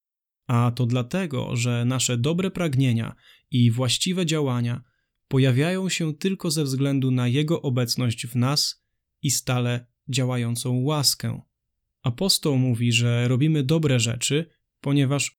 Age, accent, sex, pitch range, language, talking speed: 20-39, native, male, 120-150 Hz, Polish, 120 wpm